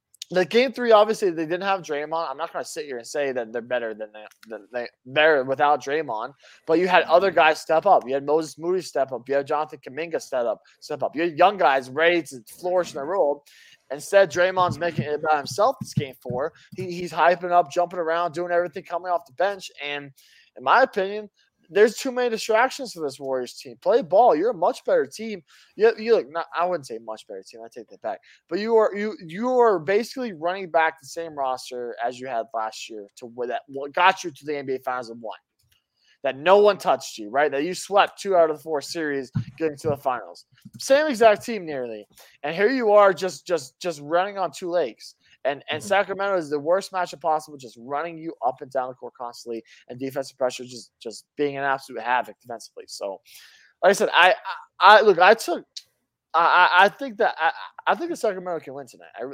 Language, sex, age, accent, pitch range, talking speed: English, male, 20-39, American, 135-185 Hz, 225 wpm